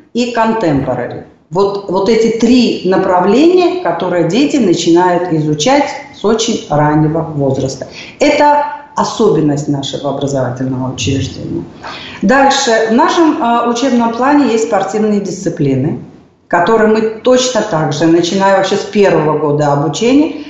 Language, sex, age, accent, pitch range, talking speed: Russian, female, 40-59, native, 160-250 Hz, 115 wpm